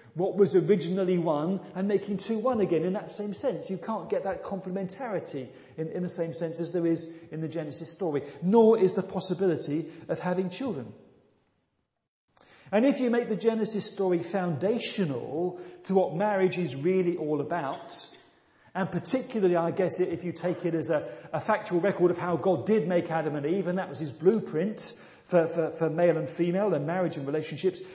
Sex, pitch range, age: male, 155-190 Hz, 40-59